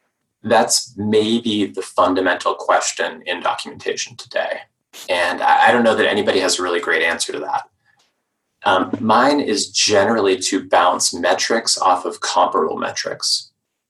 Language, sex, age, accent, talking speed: English, male, 20-39, American, 140 wpm